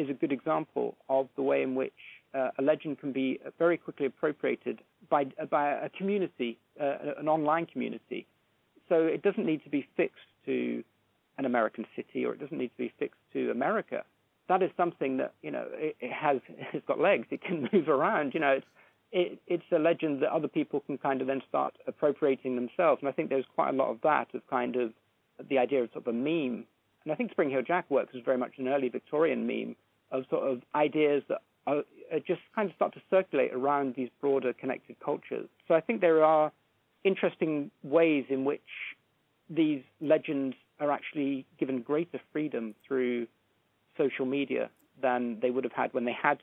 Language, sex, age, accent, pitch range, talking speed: English, male, 40-59, British, 130-155 Hz, 200 wpm